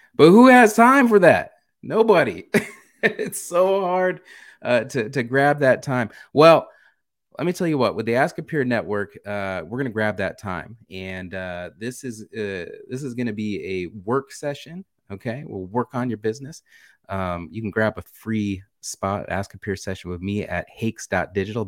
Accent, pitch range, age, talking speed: American, 95-125 Hz, 30-49, 185 wpm